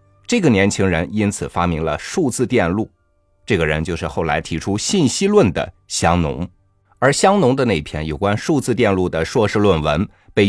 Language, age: Chinese, 50-69